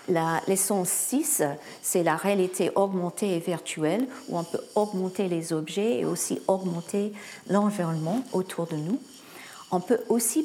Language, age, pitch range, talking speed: French, 50-69, 180-235 Hz, 145 wpm